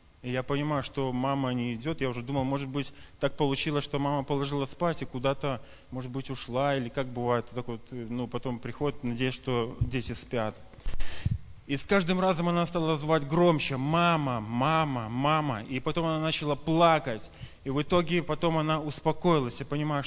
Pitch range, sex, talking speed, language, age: 115-155 Hz, male, 175 wpm, Russian, 20-39